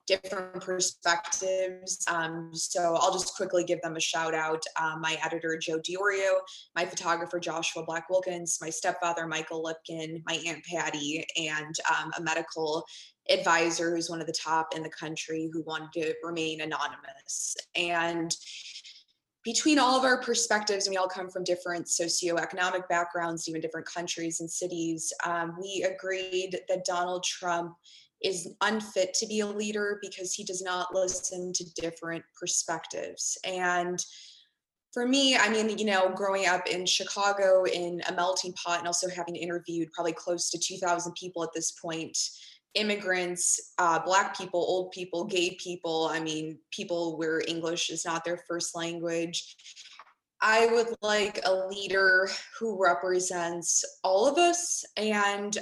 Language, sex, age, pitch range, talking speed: English, female, 20-39, 165-190 Hz, 150 wpm